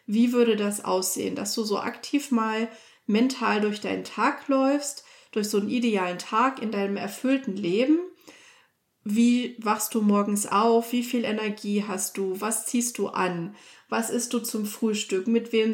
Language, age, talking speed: German, 30-49, 170 wpm